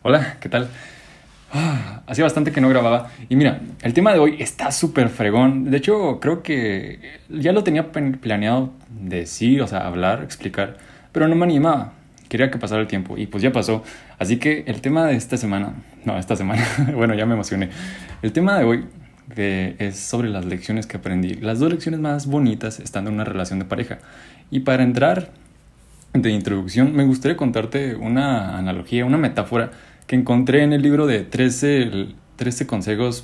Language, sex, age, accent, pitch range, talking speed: Spanish, male, 20-39, Mexican, 110-140 Hz, 180 wpm